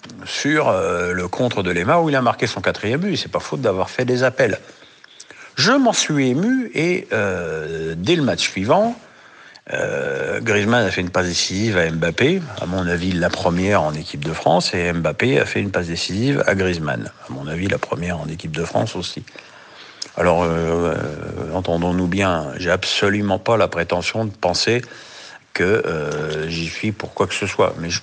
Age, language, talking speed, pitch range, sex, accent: 50-69, French, 195 wpm, 90-120 Hz, male, French